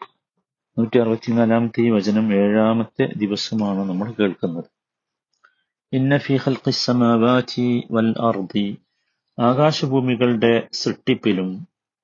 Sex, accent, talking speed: male, native, 95 wpm